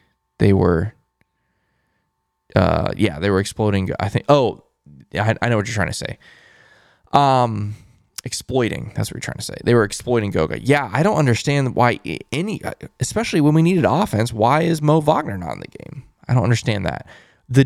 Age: 20-39